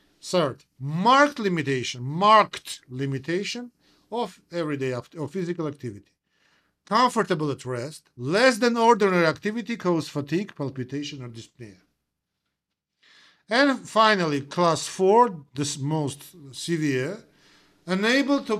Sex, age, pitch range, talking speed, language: male, 50-69, 145-210 Hz, 105 wpm, English